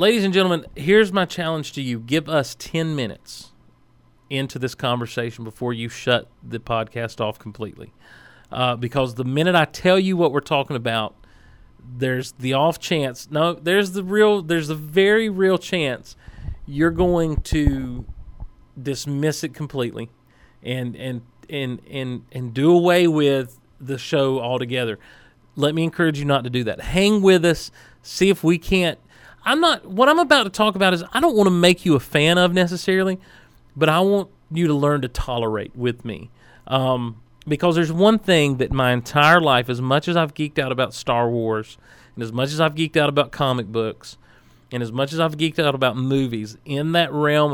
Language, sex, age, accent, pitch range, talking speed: English, male, 40-59, American, 120-165 Hz, 190 wpm